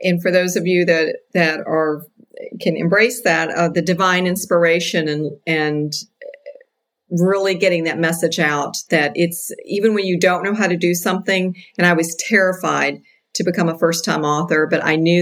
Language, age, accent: English, 50-69, American